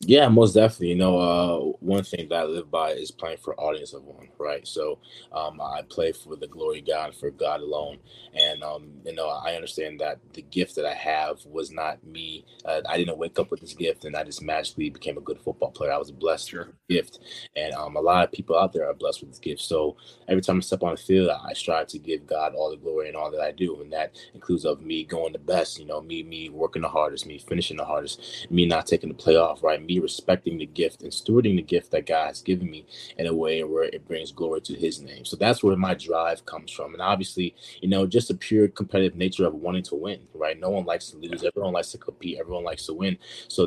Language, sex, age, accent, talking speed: English, male, 20-39, American, 255 wpm